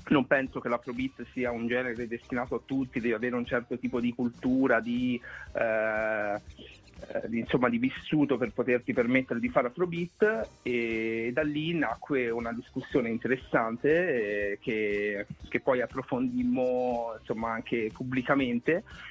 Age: 30-49